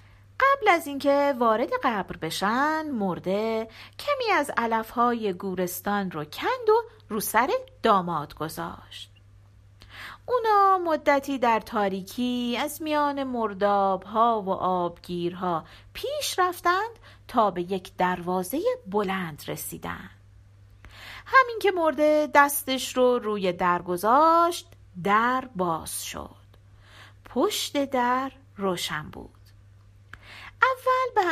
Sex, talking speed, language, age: female, 100 wpm, Persian, 40-59